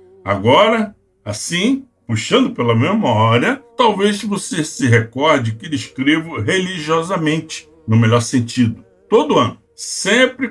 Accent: Brazilian